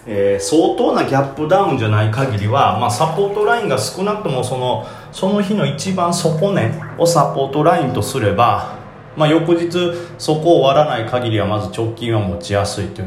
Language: Japanese